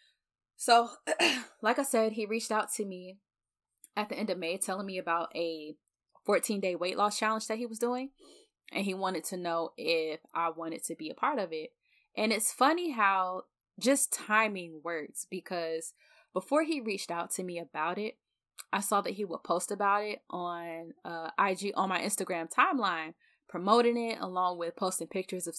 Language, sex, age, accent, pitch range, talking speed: English, female, 10-29, American, 170-225 Hz, 185 wpm